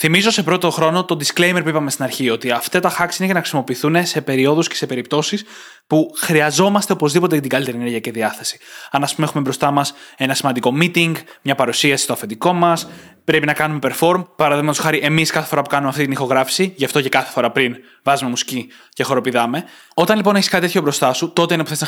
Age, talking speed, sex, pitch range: 20-39, 220 wpm, male, 130-175 Hz